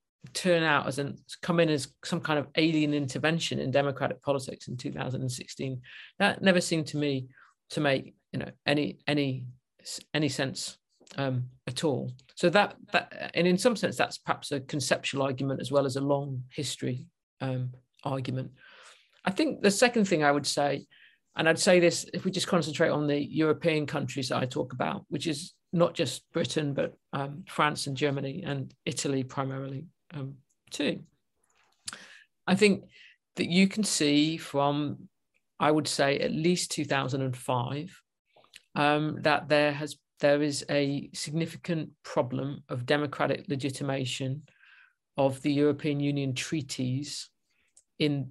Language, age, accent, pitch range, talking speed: English, 50-69, British, 135-160 Hz, 155 wpm